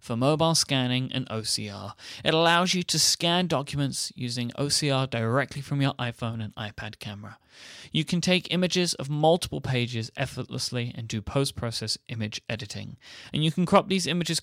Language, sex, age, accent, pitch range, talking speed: English, male, 30-49, British, 120-160 Hz, 160 wpm